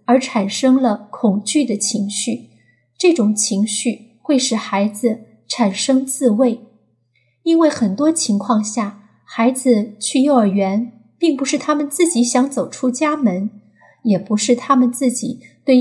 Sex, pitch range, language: female, 210-275 Hz, Chinese